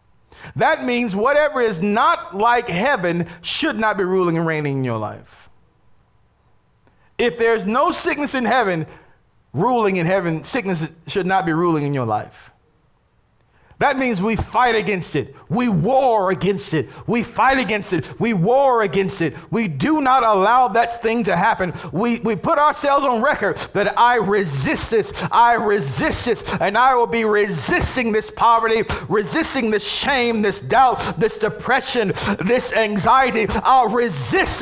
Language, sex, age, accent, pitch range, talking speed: English, male, 40-59, American, 195-270 Hz, 155 wpm